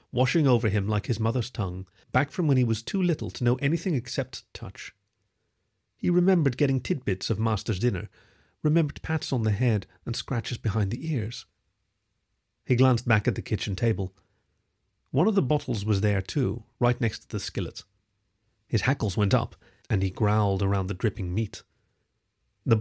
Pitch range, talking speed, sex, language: 105-140 Hz, 175 wpm, male, English